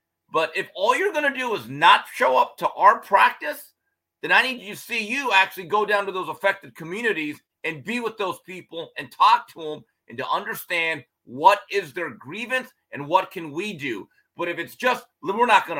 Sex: male